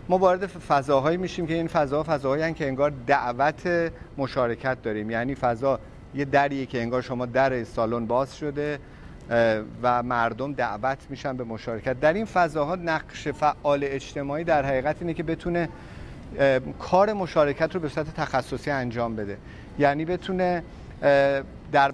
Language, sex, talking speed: Persian, male, 140 wpm